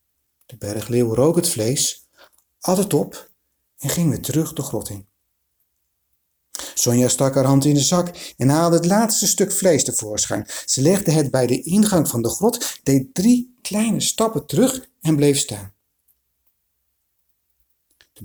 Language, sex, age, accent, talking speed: Dutch, male, 60-79, Dutch, 155 wpm